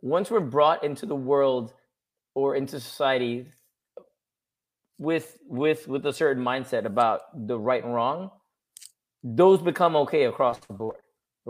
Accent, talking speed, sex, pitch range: American, 135 wpm, male, 130-170 Hz